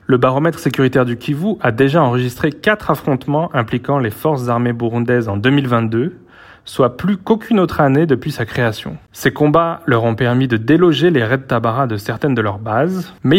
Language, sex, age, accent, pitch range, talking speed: French, male, 30-49, French, 125-165 Hz, 190 wpm